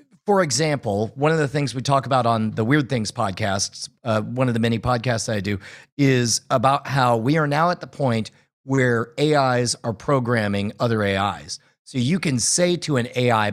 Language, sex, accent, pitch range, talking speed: English, male, American, 120-155 Hz, 200 wpm